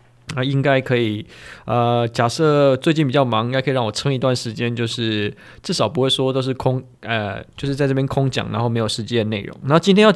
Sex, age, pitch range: male, 20-39, 115-140 Hz